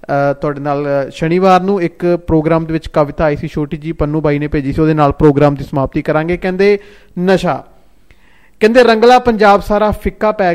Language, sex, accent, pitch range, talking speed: Hindi, male, native, 155-190 Hz, 155 wpm